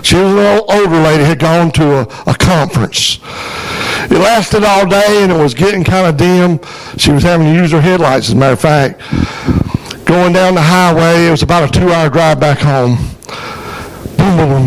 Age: 60-79